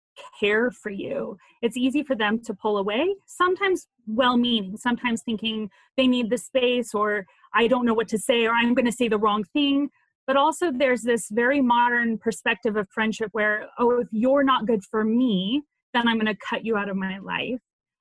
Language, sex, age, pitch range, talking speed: English, female, 30-49, 210-250 Hz, 200 wpm